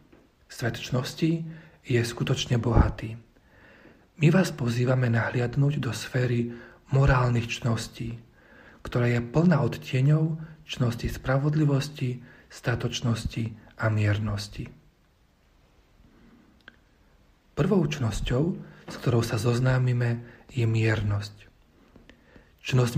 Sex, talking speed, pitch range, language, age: male, 80 wpm, 120-150 Hz, Slovak, 40-59